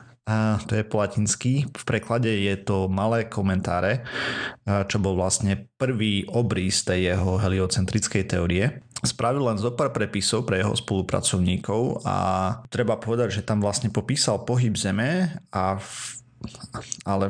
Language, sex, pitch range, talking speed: Slovak, male, 100-120 Hz, 135 wpm